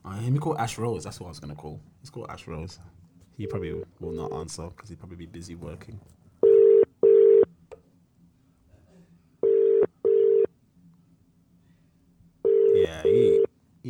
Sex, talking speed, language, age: male, 135 wpm, English, 20-39